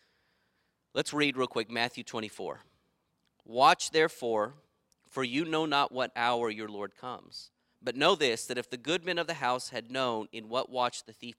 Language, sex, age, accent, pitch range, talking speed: English, male, 30-49, American, 110-135 Hz, 185 wpm